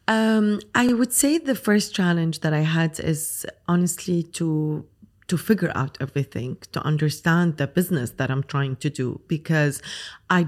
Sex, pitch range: female, 140-175 Hz